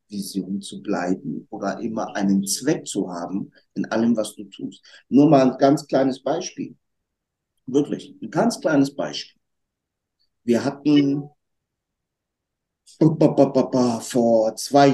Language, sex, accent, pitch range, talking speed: German, male, German, 100-140 Hz, 115 wpm